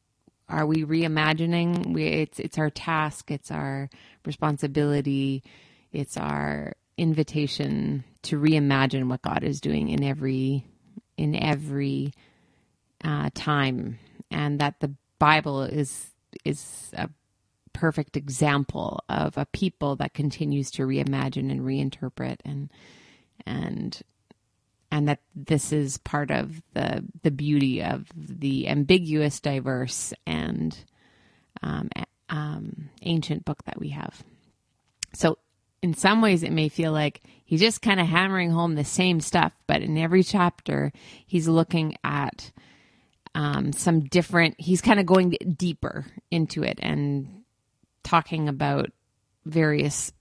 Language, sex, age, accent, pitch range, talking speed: English, female, 30-49, American, 135-165 Hz, 125 wpm